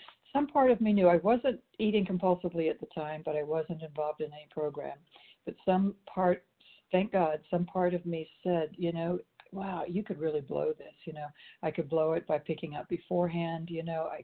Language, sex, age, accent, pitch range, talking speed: English, female, 60-79, American, 155-180 Hz, 210 wpm